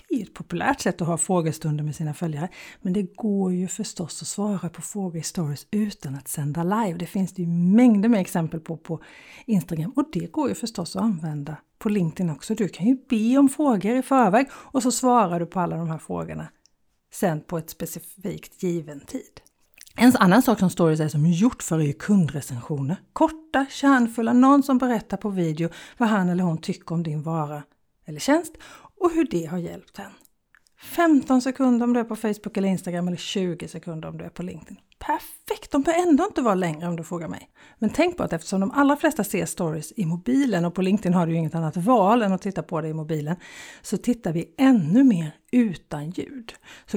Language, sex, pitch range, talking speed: Swedish, female, 165-240 Hz, 210 wpm